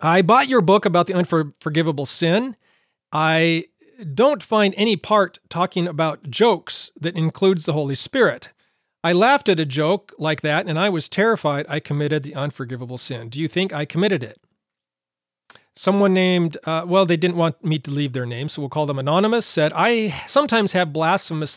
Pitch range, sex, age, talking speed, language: 145-185 Hz, male, 40-59, 180 wpm, English